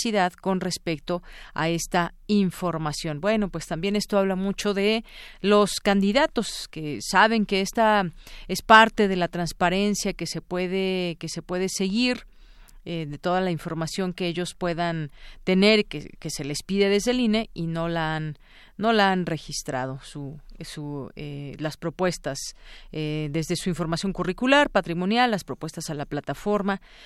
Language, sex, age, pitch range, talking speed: Spanish, female, 40-59, 170-220 Hz, 155 wpm